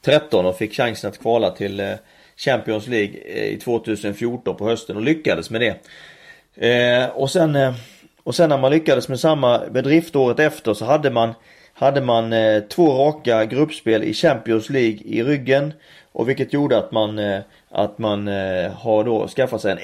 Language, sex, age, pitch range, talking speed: Swedish, male, 30-49, 115-145 Hz, 160 wpm